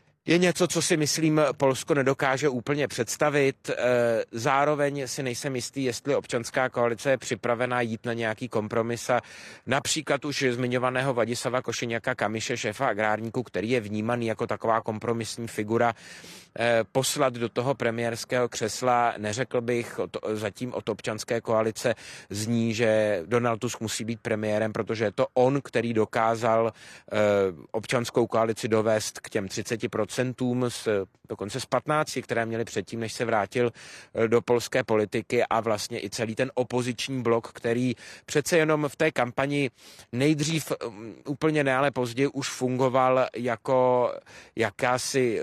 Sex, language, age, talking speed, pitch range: male, Czech, 30-49, 135 wpm, 115-130 Hz